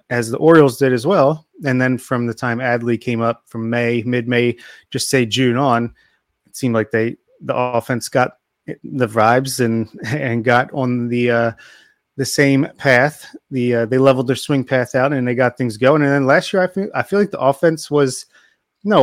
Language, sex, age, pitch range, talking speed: English, male, 30-49, 120-140 Hz, 205 wpm